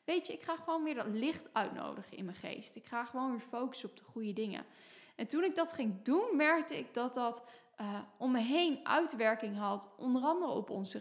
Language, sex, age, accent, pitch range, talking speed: Dutch, female, 10-29, Dutch, 220-285 Hz, 225 wpm